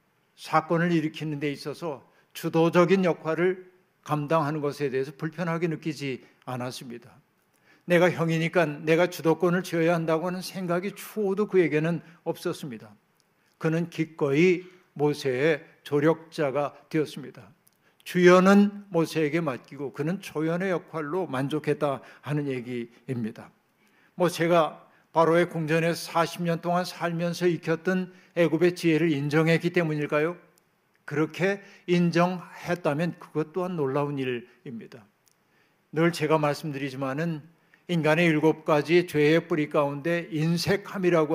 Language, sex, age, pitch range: Korean, male, 60-79, 150-175 Hz